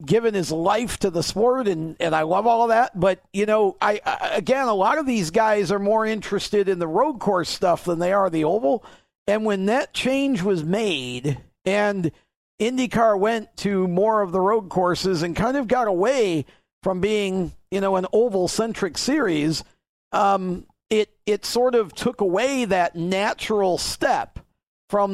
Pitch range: 170-215 Hz